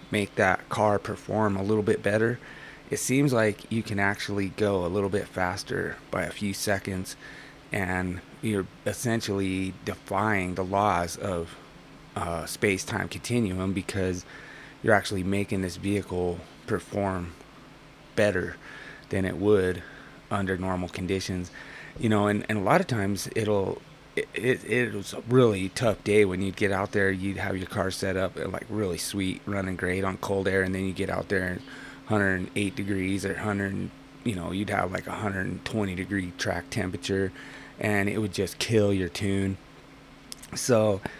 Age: 30-49